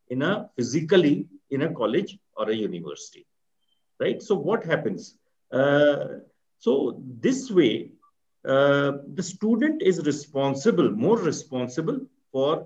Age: 50-69